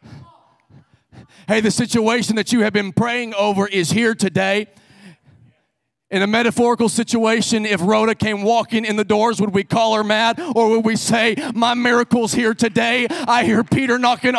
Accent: American